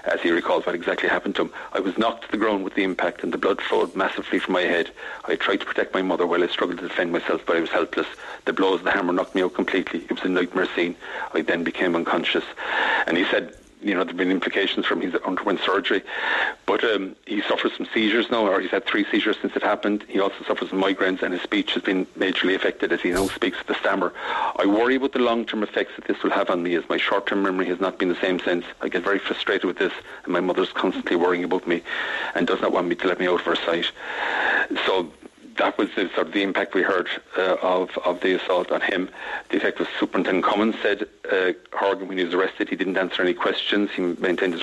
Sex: male